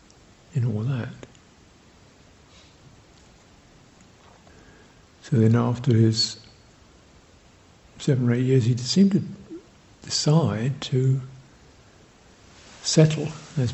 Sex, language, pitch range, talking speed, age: male, English, 110-135 Hz, 80 wpm, 60-79